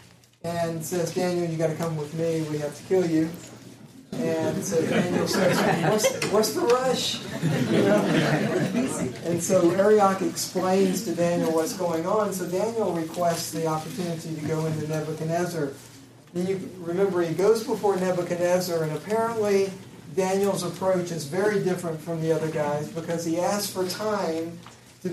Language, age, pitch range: English, 50-69, 160-185 Hz